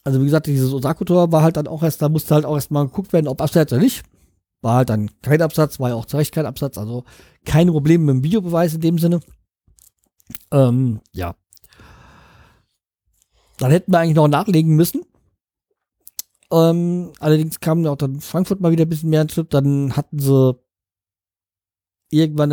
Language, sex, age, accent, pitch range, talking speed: German, male, 40-59, German, 130-165 Hz, 185 wpm